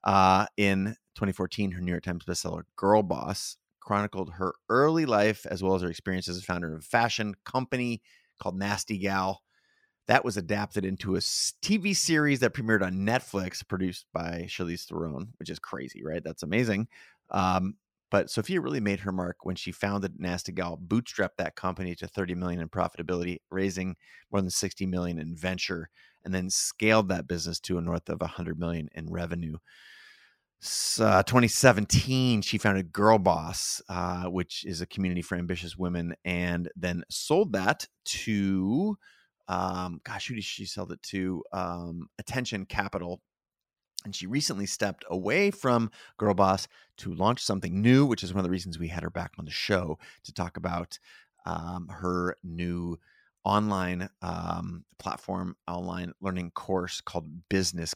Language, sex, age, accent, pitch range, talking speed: English, male, 30-49, American, 90-105 Hz, 165 wpm